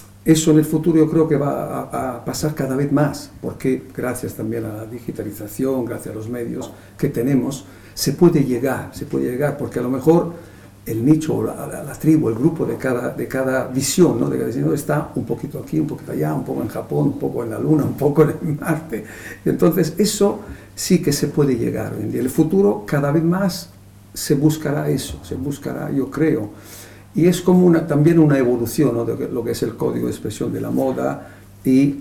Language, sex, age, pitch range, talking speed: Spanish, male, 60-79, 115-155 Hz, 215 wpm